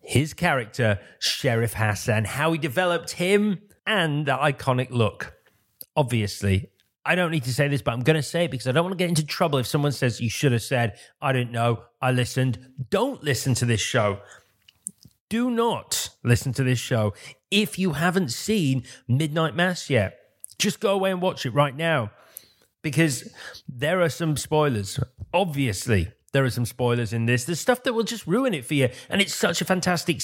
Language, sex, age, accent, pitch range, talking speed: English, male, 30-49, British, 125-175 Hz, 195 wpm